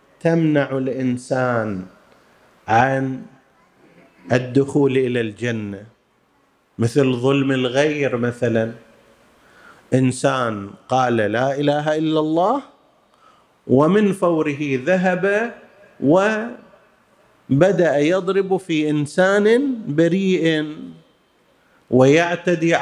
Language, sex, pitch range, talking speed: Arabic, male, 130-175 Hz, 65 wpm